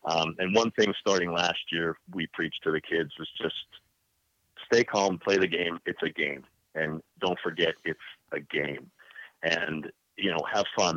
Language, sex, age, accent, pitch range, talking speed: English, male, 40-59, American, 85-100 Hz, 180 wpm